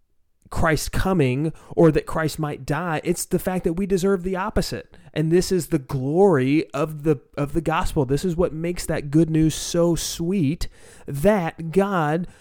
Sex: male